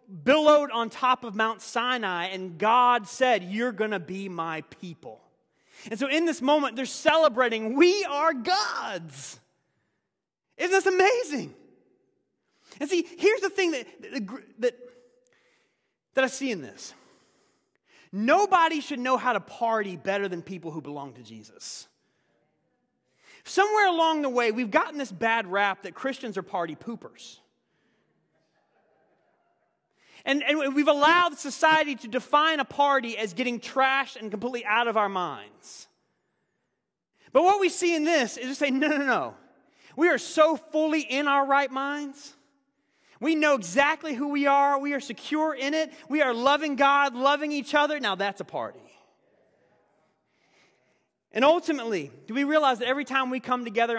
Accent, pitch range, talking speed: American, 220-305 Hz, 155 wpm